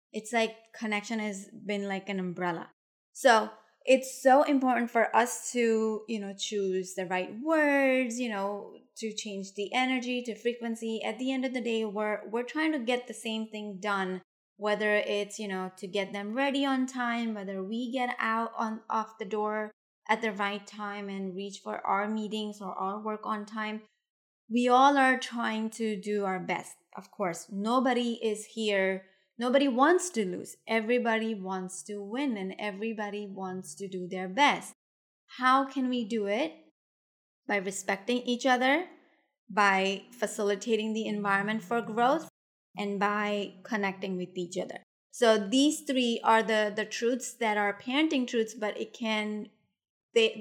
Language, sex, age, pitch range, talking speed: English, female, 20-39, 200-240 Hz, 165 wpm